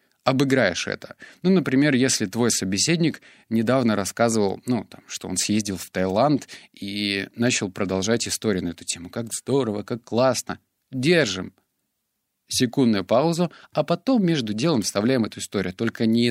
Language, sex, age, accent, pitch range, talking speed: Russian, male, 30-49, native, 95-125 Hz, 145 wpm